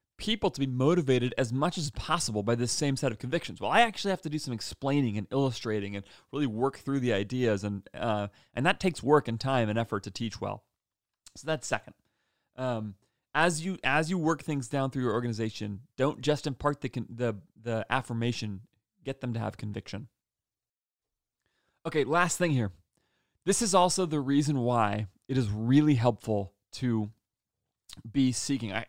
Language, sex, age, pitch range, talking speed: English, male, 30-49, 105-135 Hz, 185 wpm